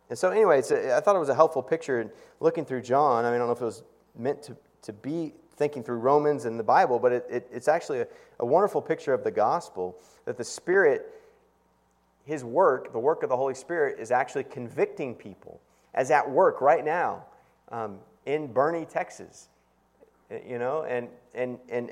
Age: 30-49